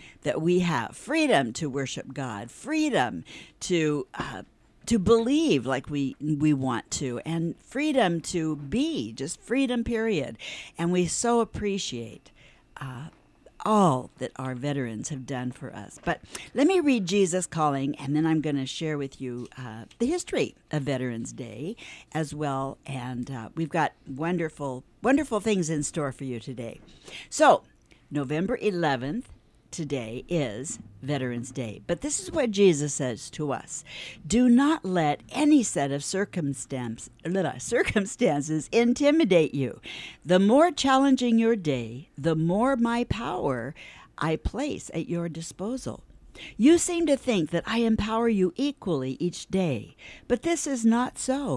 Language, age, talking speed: English, 60-79, 145 wpm